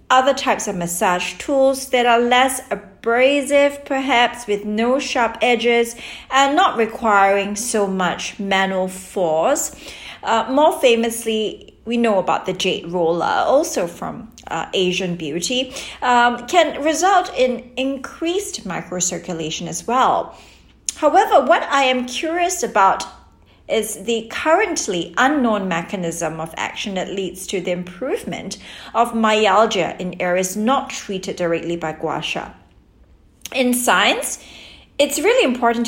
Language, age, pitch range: English, 40-59, 195-265 Hz